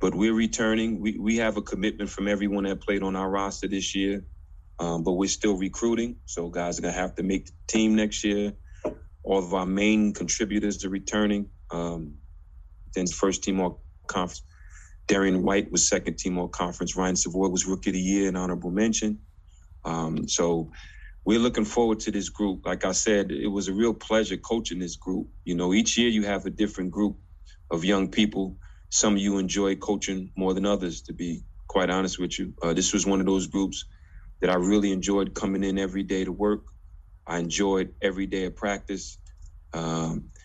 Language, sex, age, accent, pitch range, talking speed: English, male, 30-49, American, 85-100 Hz, 195 wpm